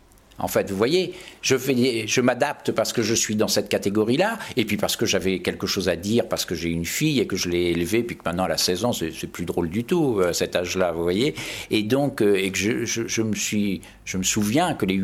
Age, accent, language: 50-69, French, French